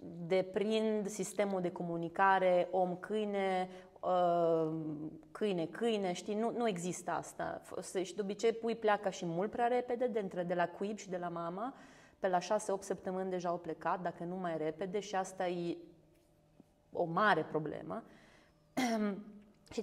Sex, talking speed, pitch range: female, 135 wpm, 180-225 Hz